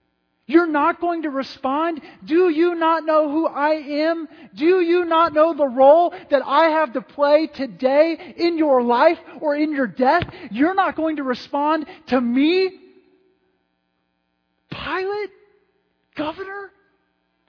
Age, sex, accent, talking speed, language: 40-59, male, American, 135 wpm, English